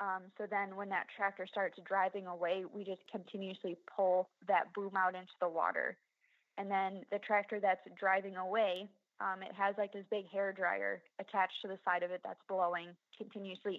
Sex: female